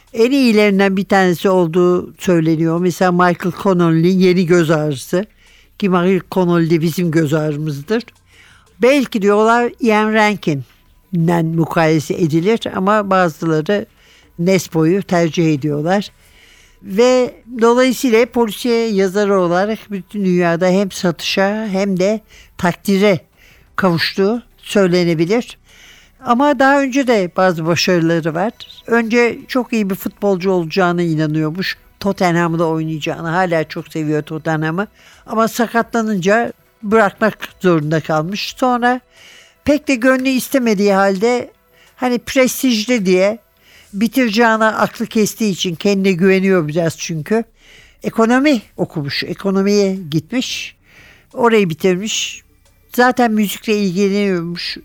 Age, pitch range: 60-79, 170-225 Hz